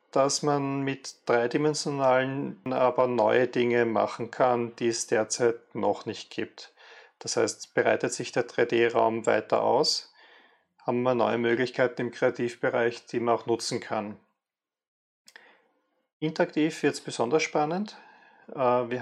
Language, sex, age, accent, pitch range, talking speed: German, male, 40-59, German, 115-135 Hz, 125 wpm